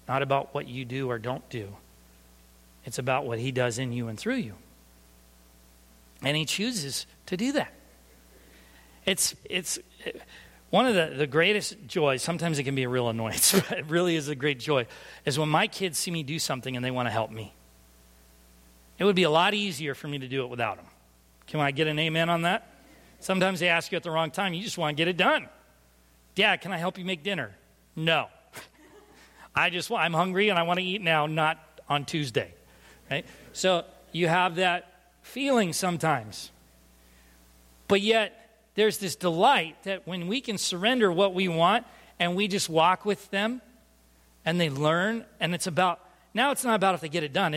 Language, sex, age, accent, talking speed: English, male, 40-59, American, 200 wpm